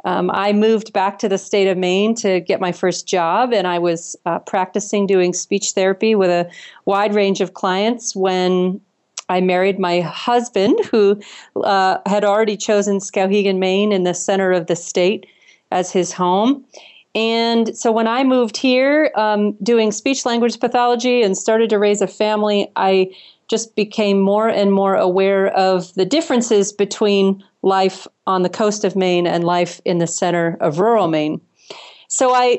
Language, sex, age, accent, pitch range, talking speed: English, female, 40-59, American, 185-215 Hz, 175 wpm